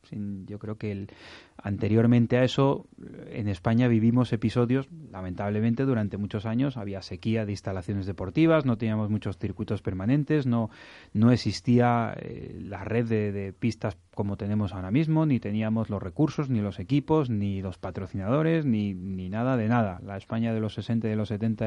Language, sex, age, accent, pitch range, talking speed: Spanish, male, 30-49, Spanish, 100-120 Hz, 170 wpm